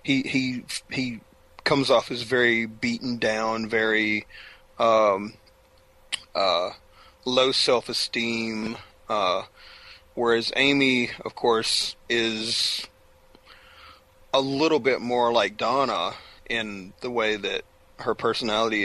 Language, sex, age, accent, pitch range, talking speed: English, male, 30-49, American, 105-125 Hz, 105 wpm